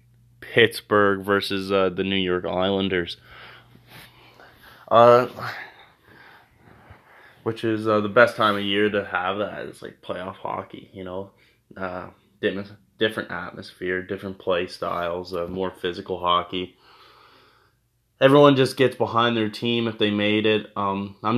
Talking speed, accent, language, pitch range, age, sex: 130 wpm, American, English, 95-115 Hz, 20-39, male